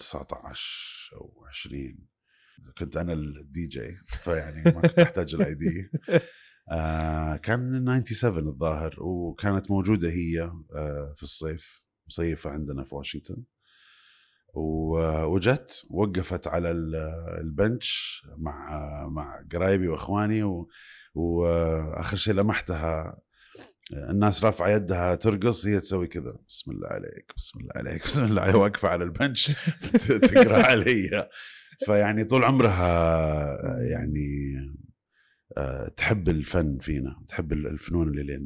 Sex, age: male, 30-49